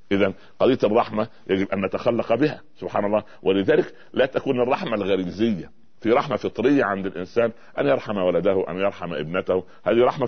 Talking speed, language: 160 wpm, Arabic